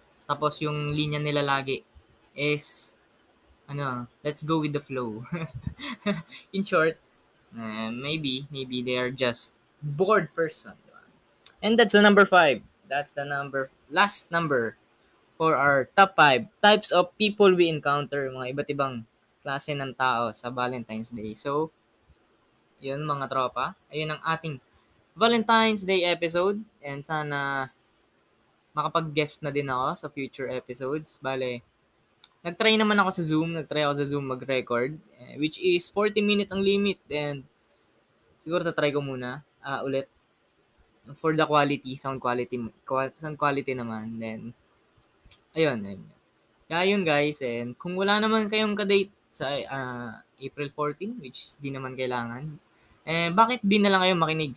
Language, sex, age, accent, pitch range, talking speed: Filipino, female, 20-39, native, 130-170 Hz, 140 wpm